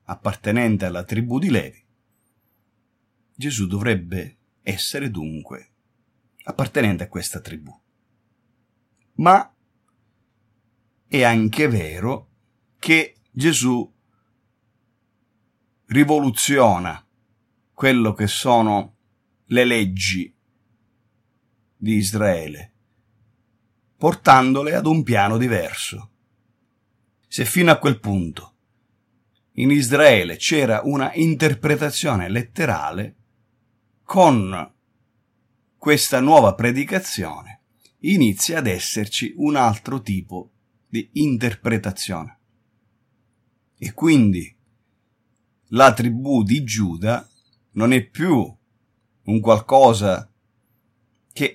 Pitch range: 110-120 Hz